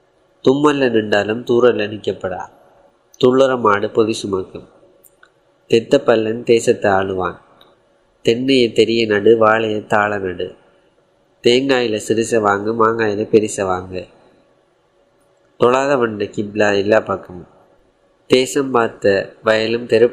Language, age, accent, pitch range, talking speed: Tamil, 20-39, native, 100-120 Hz, 90 wpm